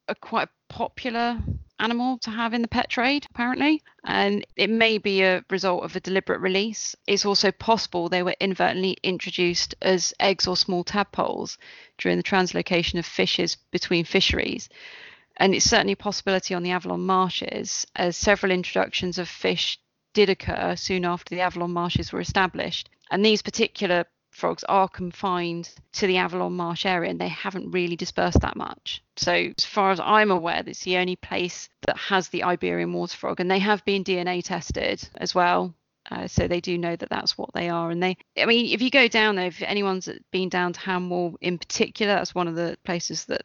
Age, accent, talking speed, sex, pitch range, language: 30-49, British, 190 wpm, female, 170-195 Hz, English